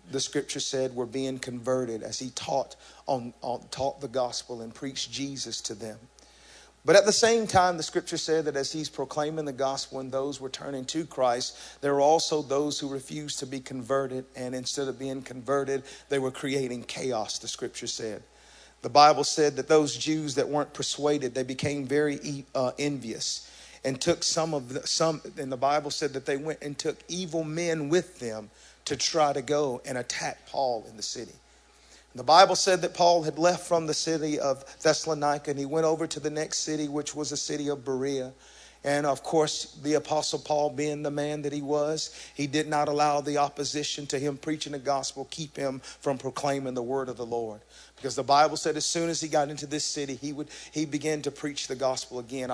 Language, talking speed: English, 210 wpm